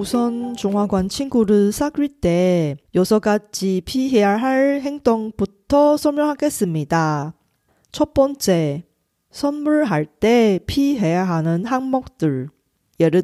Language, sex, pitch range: Korean, female, 175-265 Hz